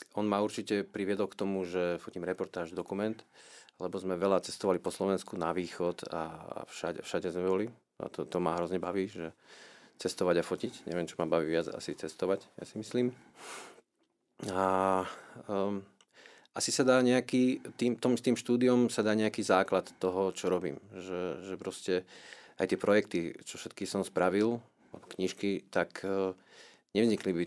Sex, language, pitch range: male, Slovak, 95-110 Hz